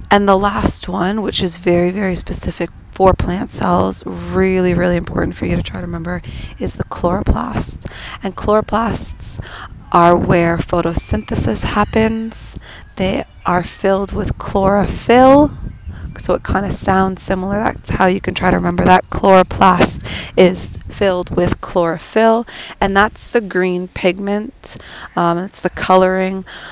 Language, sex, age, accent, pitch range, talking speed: English, female, 20-39, American, 175-195 Hz, 140 wpm